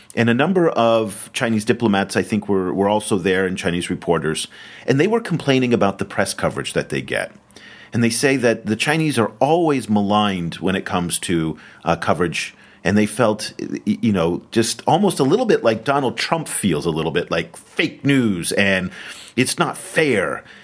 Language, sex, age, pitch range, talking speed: English, male, 40-59, 100-135 Hz, 190 wpm